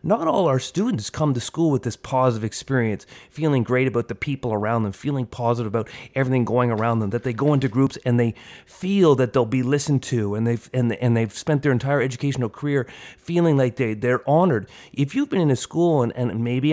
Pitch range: 125-165 Hz